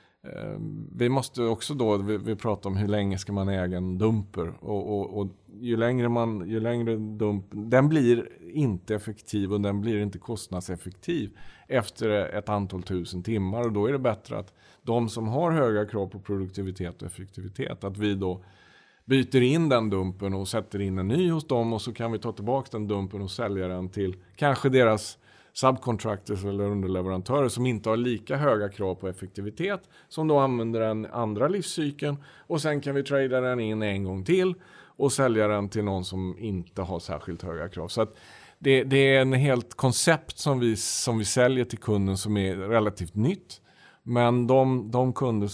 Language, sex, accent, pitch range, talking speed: Swedish, male, Norwegian, 100-130 Hz, 185 wpm